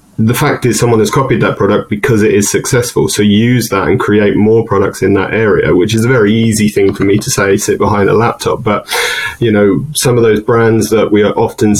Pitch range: 100-115 Hz